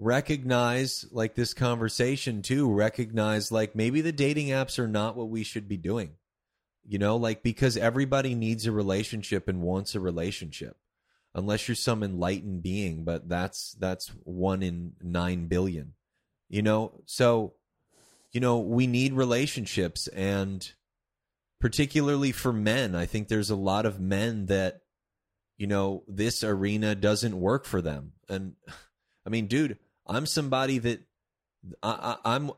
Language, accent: English, American